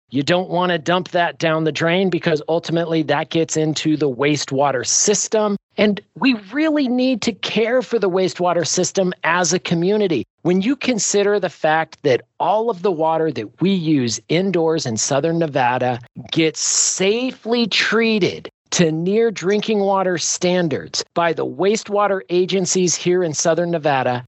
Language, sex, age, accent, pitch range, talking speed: English, male, 40-59, American, 160-205 Hz, 155 wpm